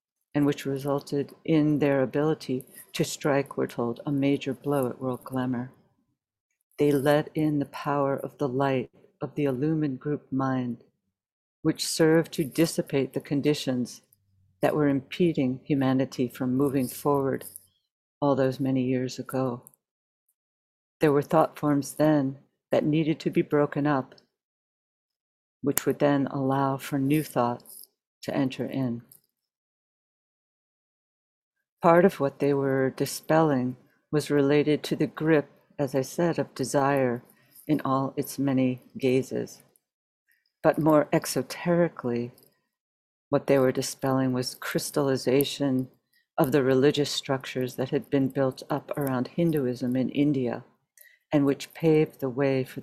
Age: 60-79